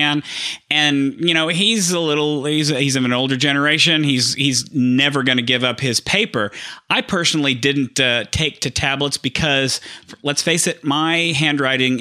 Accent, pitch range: American, 125-150 Hz